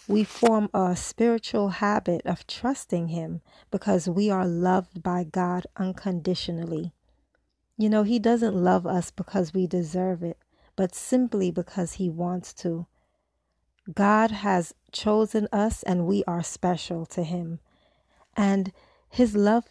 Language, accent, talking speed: English, American, 135 wpm